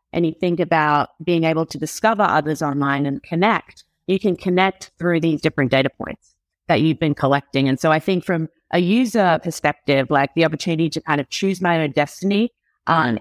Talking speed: 195 wpm